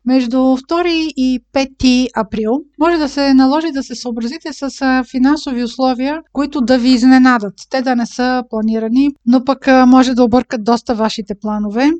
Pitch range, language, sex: 230-275 Hz, Bulgarian, female